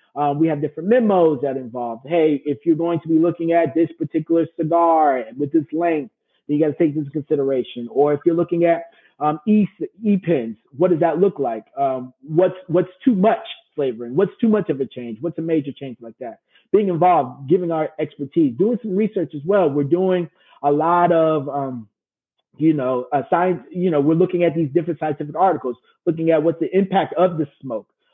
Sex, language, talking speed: male, English, 205 wpm